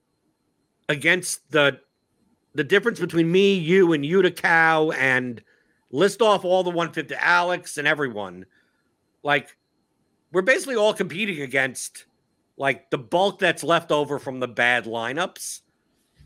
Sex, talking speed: male, 130 wpm